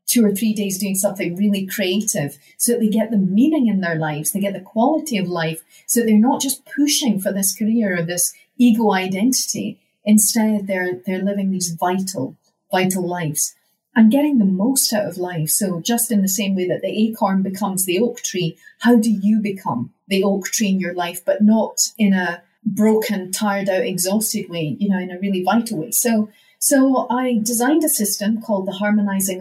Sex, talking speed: female, 200 wpm